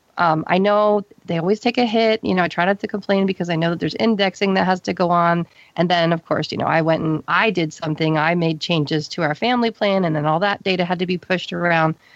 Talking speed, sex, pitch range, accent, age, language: 270 wpm, female, 165-200 Hz, American, 40-59, English